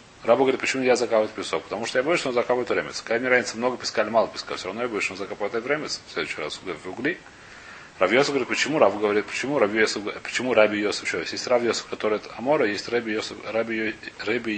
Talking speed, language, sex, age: 185 wpm, Russian, male, 30-49